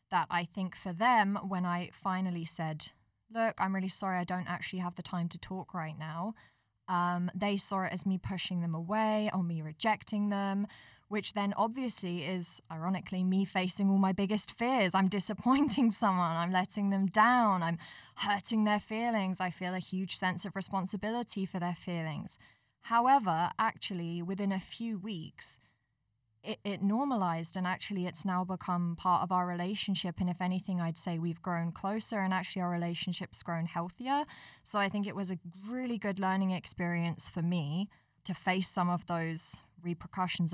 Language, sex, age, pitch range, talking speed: English, female, 20-39, 170-200 Hz, 175 wpm